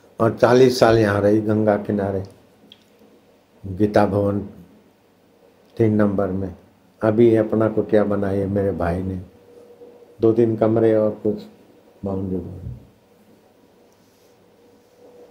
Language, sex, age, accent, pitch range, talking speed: Hindi, male, 60-79, native, 105-130 Hz, 100 wpm